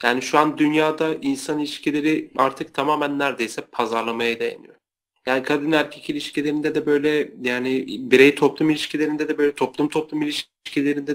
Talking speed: 140 wpm